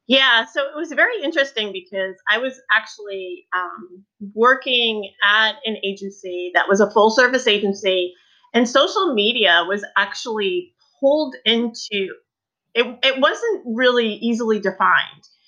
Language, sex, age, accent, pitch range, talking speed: English, female, 30-49, American, 185-235 Hz, 130 wpm